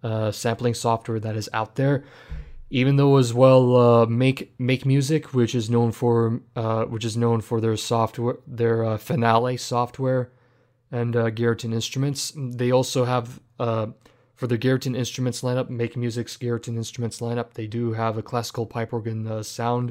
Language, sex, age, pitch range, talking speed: English, male, 20-39, 115-125 Hz, 165 wpm